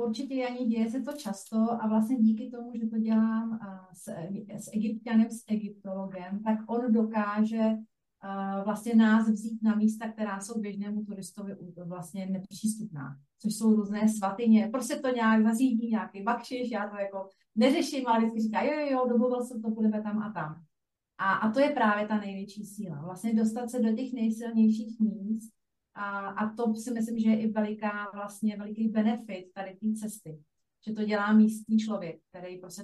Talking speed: 175 wpm